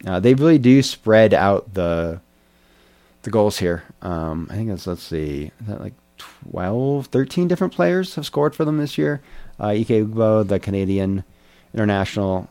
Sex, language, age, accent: male, English, 30-49, American